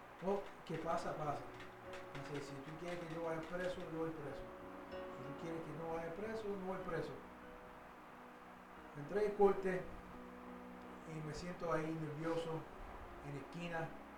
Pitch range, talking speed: 150-200 Hz, 150 wpm